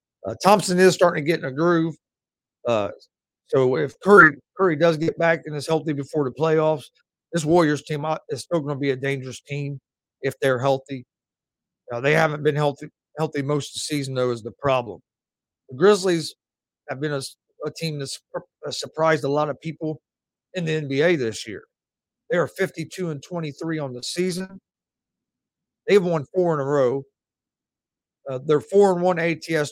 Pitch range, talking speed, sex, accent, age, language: 135-170 Hz, 175 wpm, male, American, 50-69, English